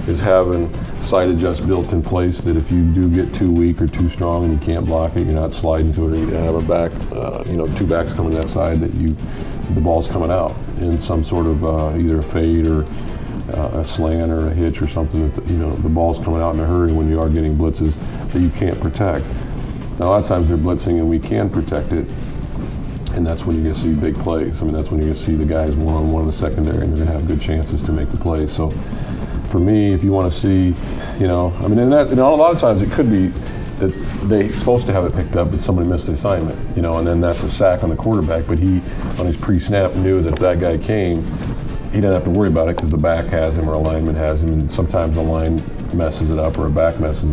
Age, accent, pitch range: 50-69, American, 80-90 Hz